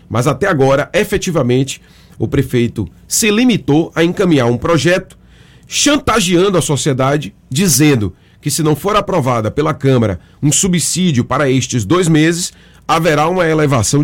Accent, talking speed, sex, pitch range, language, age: Brazilian, 135 wpm, male, 120-170 Hz, Portuguese, 30-49